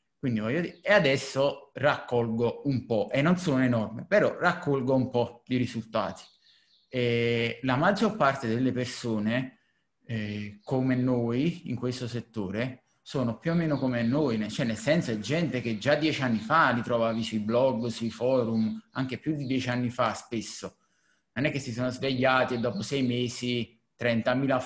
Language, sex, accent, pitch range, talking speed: Italian, male, native, 120-140 Hz, 165 wpm